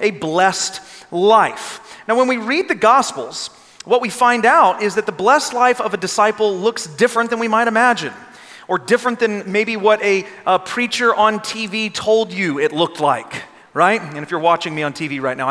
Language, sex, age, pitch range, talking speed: English, male, 30-49, 165-220 Hz, 200 wpm